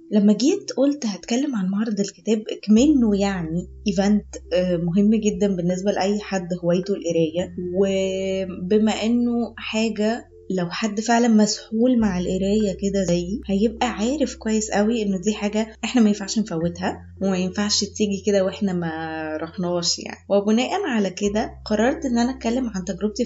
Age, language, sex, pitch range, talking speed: 20-39, Arabic, female, 190-240 Hz, 145 wpm